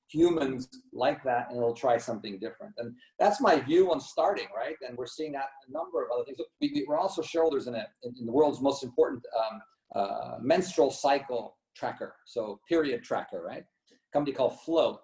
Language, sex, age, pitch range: English, male, 50-69, 130-165 Hz